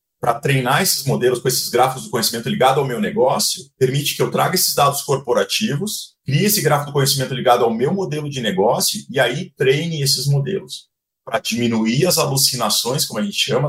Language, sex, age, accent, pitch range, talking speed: Portuguese, male, 40-59, Brazilian, 130-170 Hz, 195 wpm